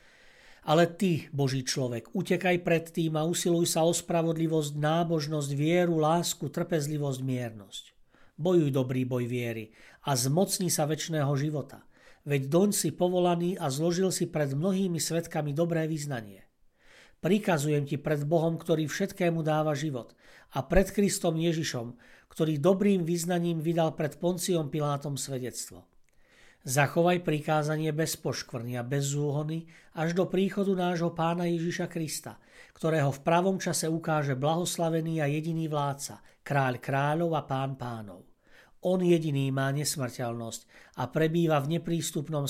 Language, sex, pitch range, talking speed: Slovak, male, 140-170 Hz, 135 wpm